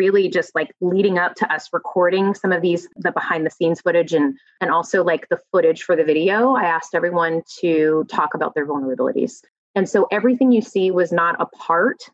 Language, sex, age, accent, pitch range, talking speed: English, female, 20-39, American, 170-215 Hz, 210 wpm